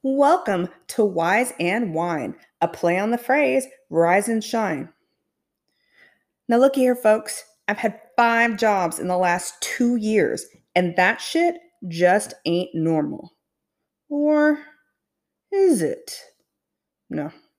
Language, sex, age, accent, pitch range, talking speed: English, female, 30-49, American, 180-245 Hz, 125 wpm